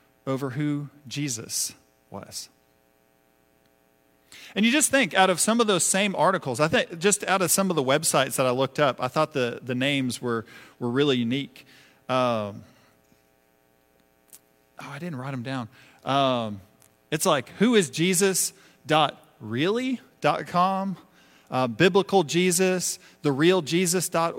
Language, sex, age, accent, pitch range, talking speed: English, male, 40-59, American, 125-185 Hz, 125 wpm